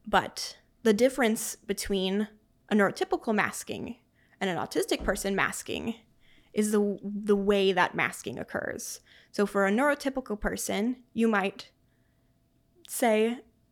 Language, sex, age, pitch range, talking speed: English, female, 20-39, 200-250 Hz, 120 wpm